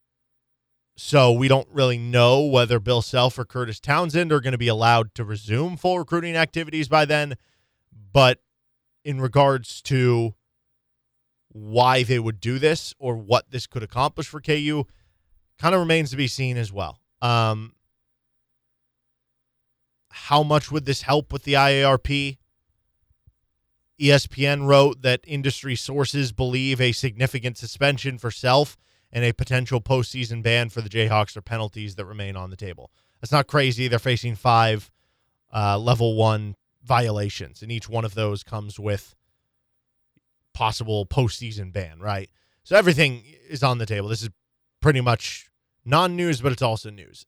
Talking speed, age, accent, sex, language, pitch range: 150 wpm, 20-39, American, male, English, 110-140 Hz